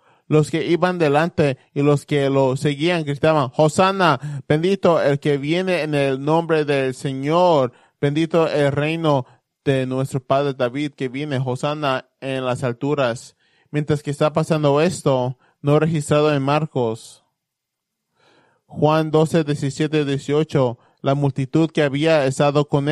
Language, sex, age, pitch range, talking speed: English, male, 20-39, 135-155 Hz, 135 wpm